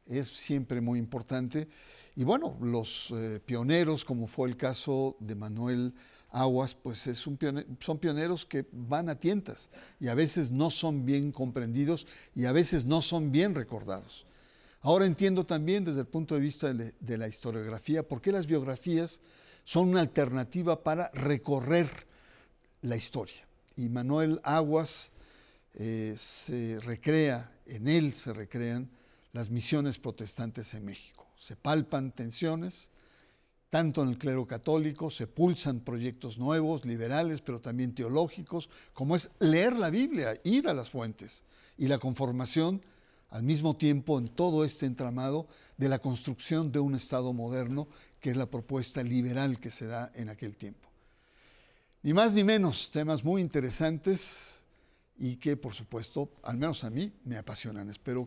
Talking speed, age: 155 wpm, 50-69